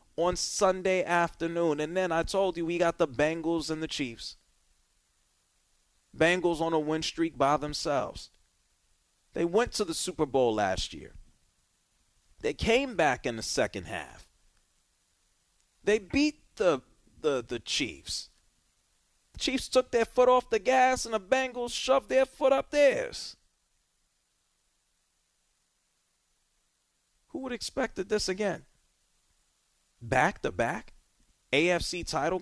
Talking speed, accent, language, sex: 120 wpm, American, English, male